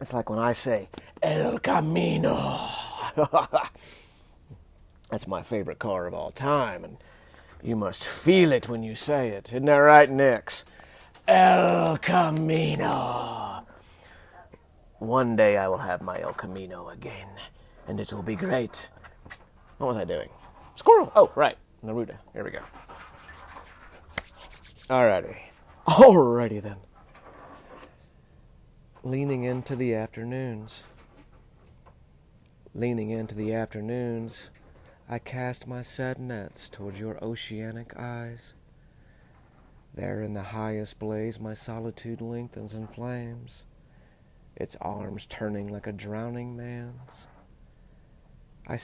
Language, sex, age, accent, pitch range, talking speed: English, male, 30-49, American, 100-125 Hz, 115 wpm